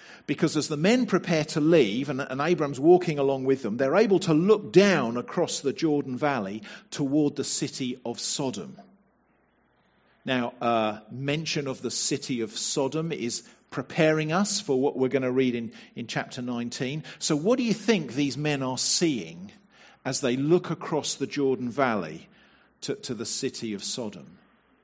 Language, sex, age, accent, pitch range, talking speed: English, male, 50-69, British, 135-185 Hz, 170 wpm